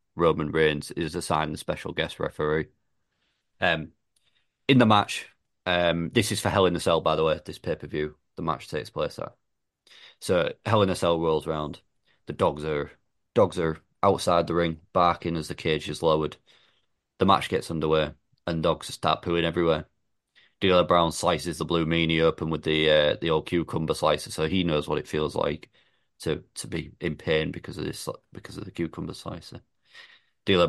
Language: English